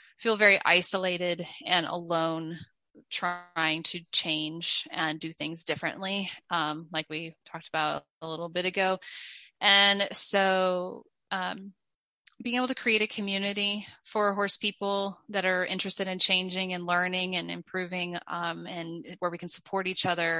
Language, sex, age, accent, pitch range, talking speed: English, female, 20-39, American, 165-190 Hz, 145 wpm